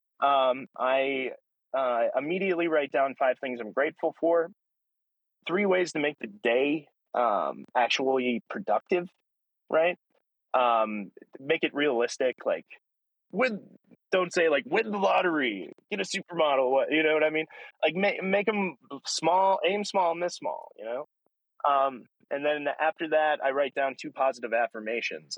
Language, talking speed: English, 150 wpm